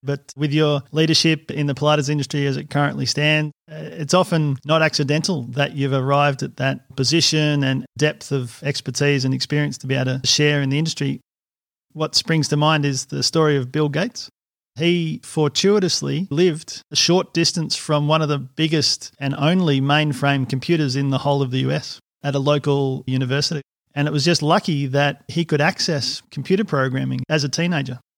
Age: 30-49